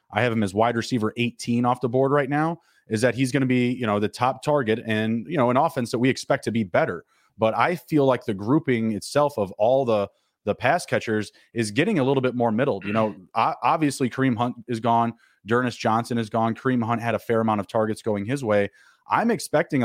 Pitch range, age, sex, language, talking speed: 110-135 Hz, 30-49, male, English, 235 wpm